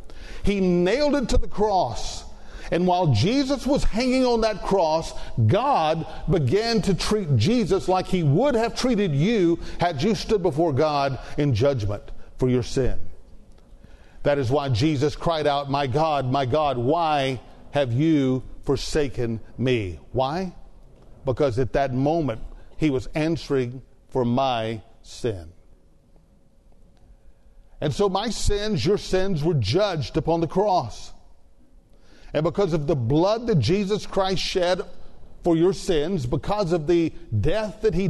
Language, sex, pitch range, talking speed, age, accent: English, male, 130-185 Hz, 140 wpm, 50-69, American